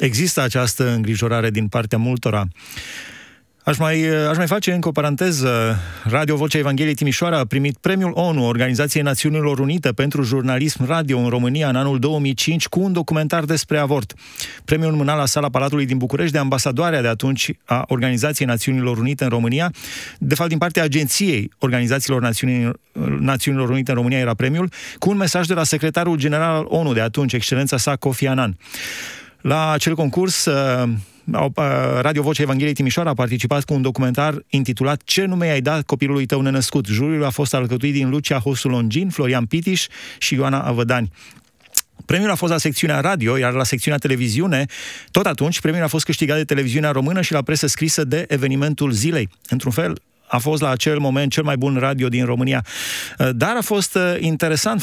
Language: Romanian